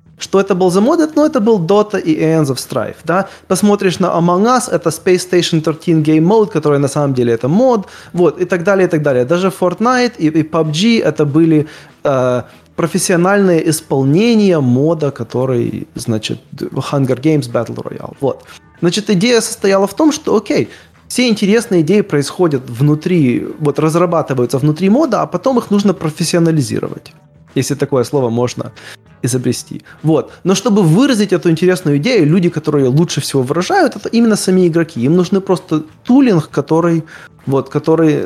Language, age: Russian, 20-39